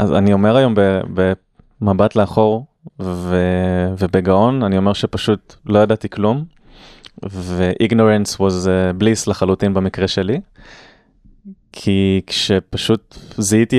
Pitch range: 95-110 Hz